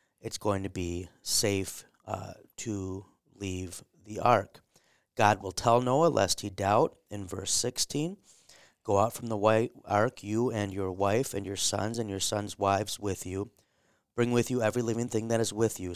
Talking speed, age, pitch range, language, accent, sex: 185 wpm, 30-49, 100-115 Hz, English, American, male